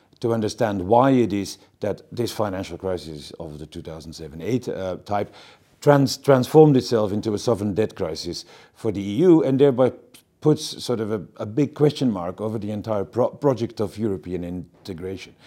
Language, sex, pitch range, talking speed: English, male, 95-130 Hz, 155 wpm